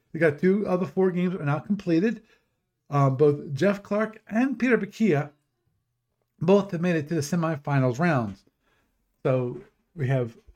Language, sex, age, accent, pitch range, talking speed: English, male, 50-69, American, 125-180 Hz, 160 wpm